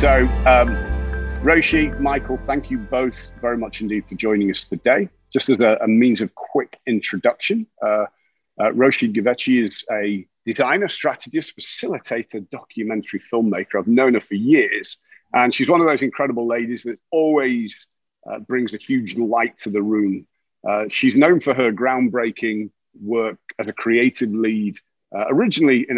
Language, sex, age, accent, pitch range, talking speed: English, male, 50-69, British, 105-130 Hz, 160 wpm